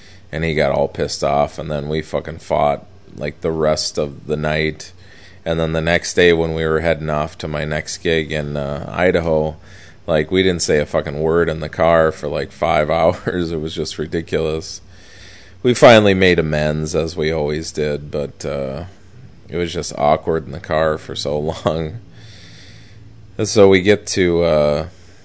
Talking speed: 185 wpm